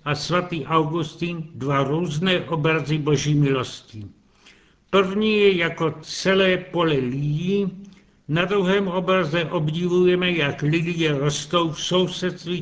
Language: Czech